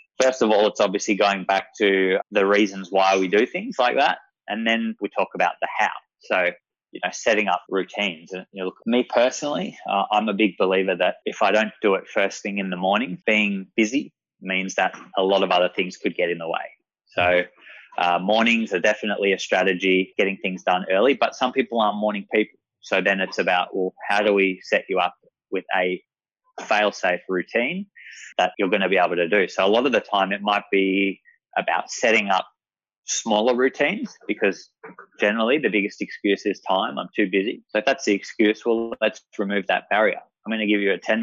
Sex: male